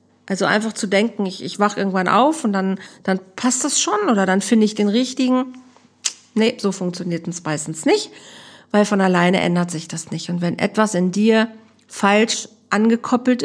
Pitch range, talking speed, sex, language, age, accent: 185-225 Hz, 185 wpm, female, German, 50-69, German